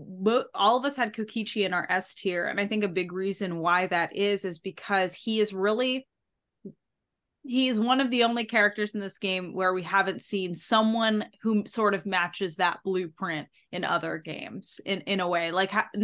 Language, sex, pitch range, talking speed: English, female, 180-215 Hz, 200 wpm